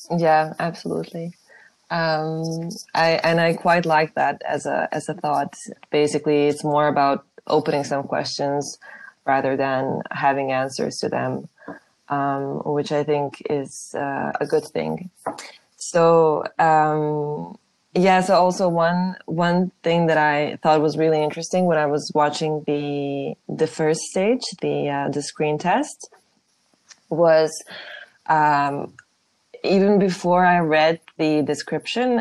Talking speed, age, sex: 130 wpm, 20-39, female